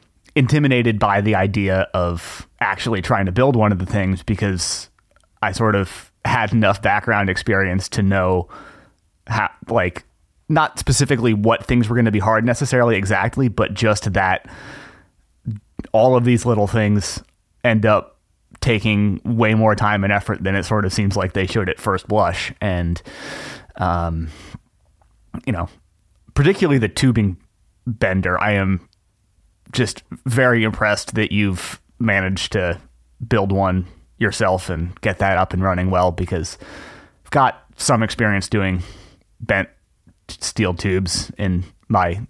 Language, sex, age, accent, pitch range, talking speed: English, male, 30-49, American, 90-110 Hz, 145 wpm